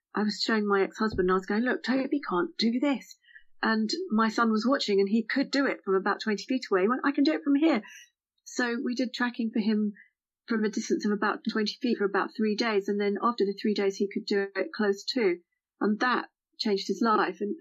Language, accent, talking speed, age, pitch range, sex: English, British, 245 wpm, 40-59, 205-270 Hz, female